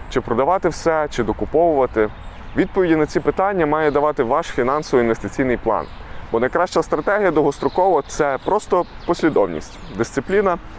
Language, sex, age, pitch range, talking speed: Ukrainian, male, 20-39, 120-165 Hz, 120 wpm